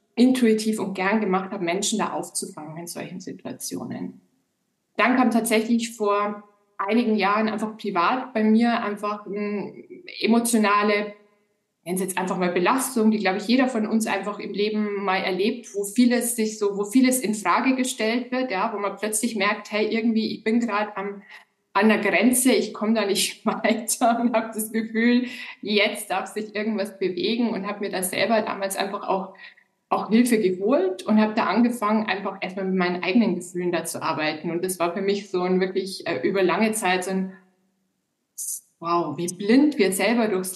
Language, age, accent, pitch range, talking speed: German, 20-39, German, 190-225 Hz, 180 wpm